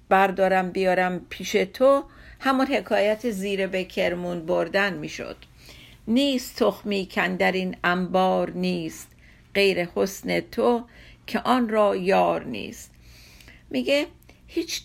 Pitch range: 185-240 Hz